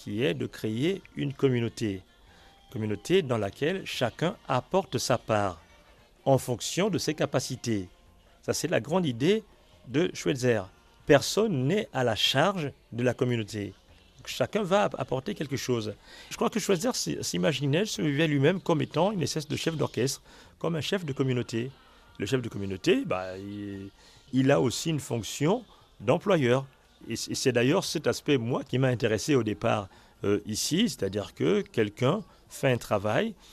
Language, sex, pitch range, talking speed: French, male, 110-145 Hz, 160 wpm